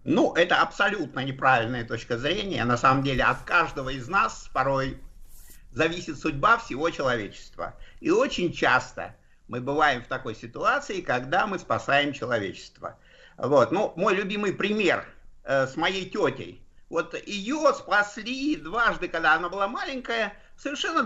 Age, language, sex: 50-69, Russian, male